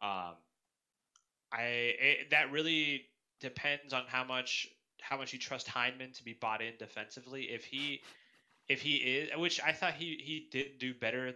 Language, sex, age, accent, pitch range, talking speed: English, male, 20-39, American, 110-130 Hz, 170 wpm